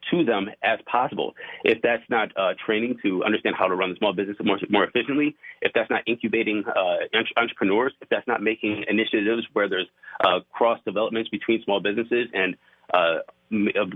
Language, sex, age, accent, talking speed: English, male, 30-49, American, 180 wpm